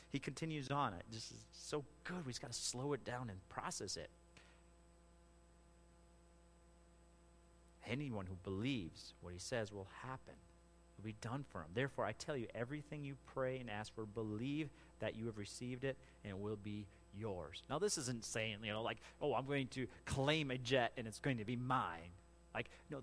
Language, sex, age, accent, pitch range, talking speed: English, male, 40-59, American, 95-155 Hz, 195 wpm